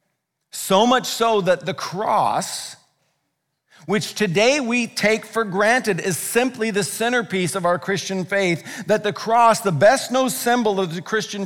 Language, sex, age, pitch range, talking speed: English, male, 50-69, 180-225 Hz, 150 wpm